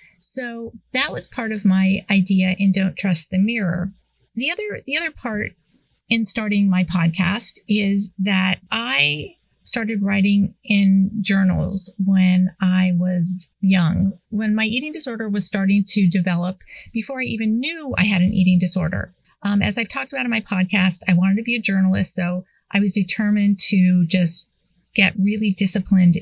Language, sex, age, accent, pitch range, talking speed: English, female, 30-49, American, 185-225 Hz, 165 wpm